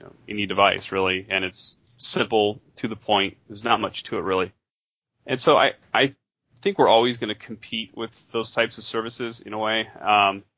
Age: 30-49